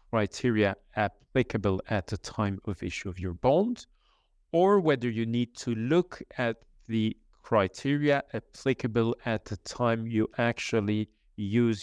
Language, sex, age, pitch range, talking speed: English, male, 40-59, 95-125 Hz, 130 wpm